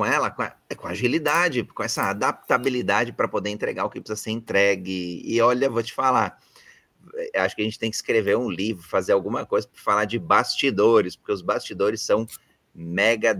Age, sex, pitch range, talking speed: 30-49, male, 100-160 Hz, 195 wpm